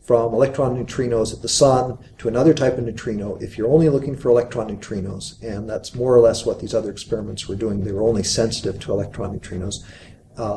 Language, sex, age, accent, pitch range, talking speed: English, male, 50-69, American, 100-120 Hz, 210 wpm